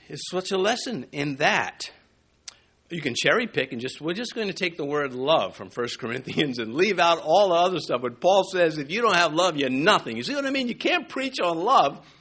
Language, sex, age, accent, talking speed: English, male, 60-79, American, 245 wpm